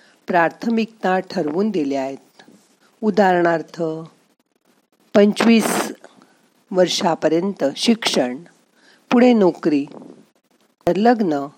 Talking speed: 55 wpm